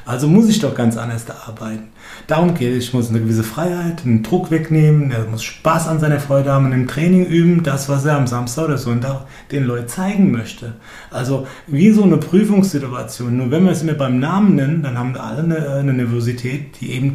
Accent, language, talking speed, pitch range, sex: German, German, 220 wpm, 120-155 Hz, male